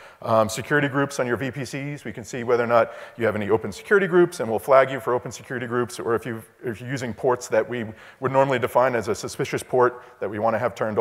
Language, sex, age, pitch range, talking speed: English, male, 40-59, 115-140 Hz, 260 wpm